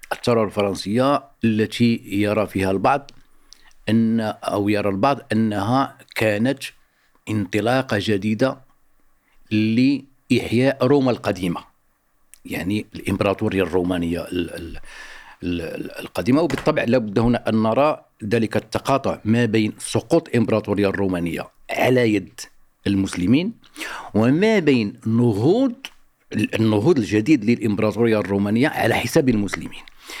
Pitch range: 100-120 Hz